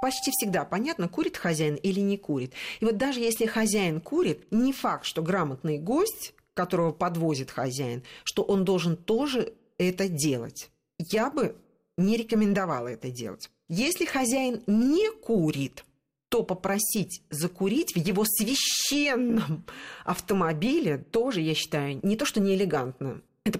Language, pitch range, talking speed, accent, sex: Russian, 170-235 Hz, 135 wpm, native, female